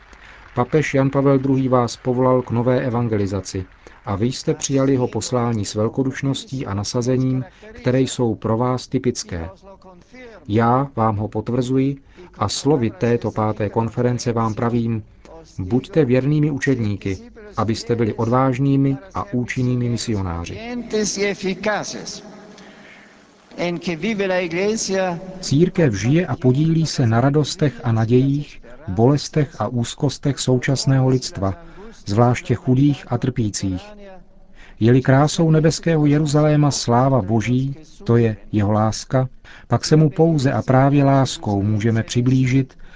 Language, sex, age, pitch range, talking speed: Czech, male, 50-69, 115-150 Hz, 115 wpm